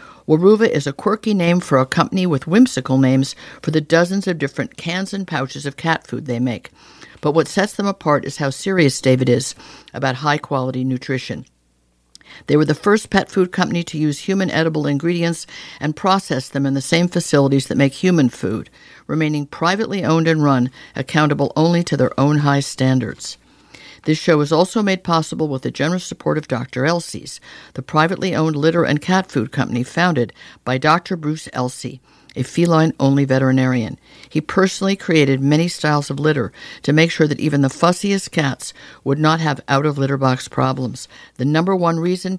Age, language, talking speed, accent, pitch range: 60-79, English, 180 wpm, American, 135-170 Hz